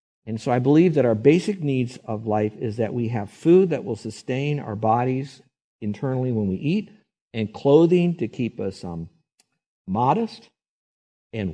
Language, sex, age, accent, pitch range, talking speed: English, male, 50-69, American, 110-140 Hz, 165 wpm